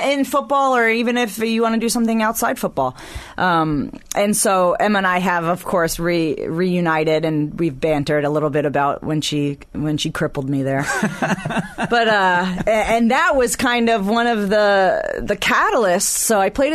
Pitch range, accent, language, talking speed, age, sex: 155-225 Hz, American, English, 185 wpm, 30-49, female